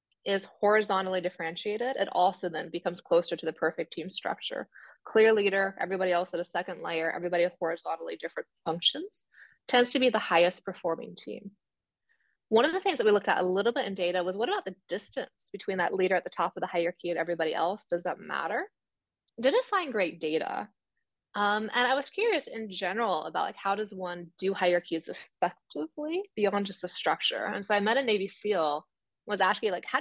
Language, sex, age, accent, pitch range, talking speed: English, female, 20-39, American, 180-235 Hz, 200 wpm